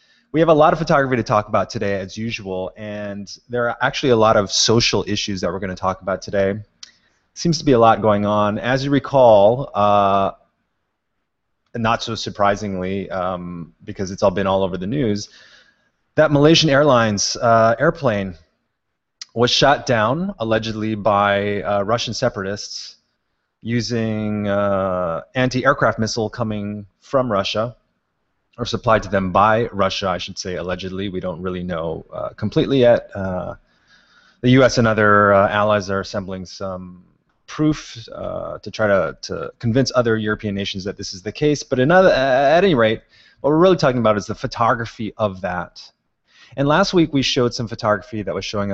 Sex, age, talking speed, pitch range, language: male, 30-49, 170 wpm, 100-120 Hz, English